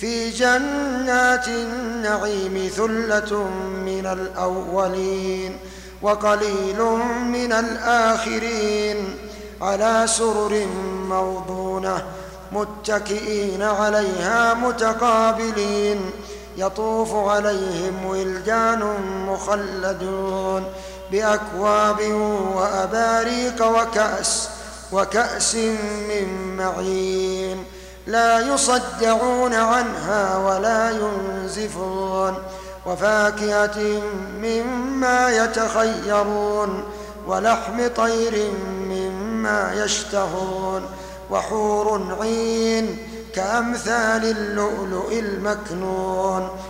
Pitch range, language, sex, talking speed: 190-225 Hz, Arabic, male, 55 wpm